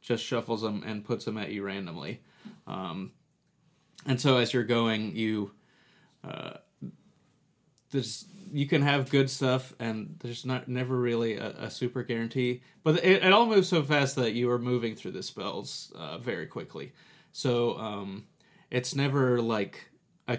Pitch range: 115-140 Hz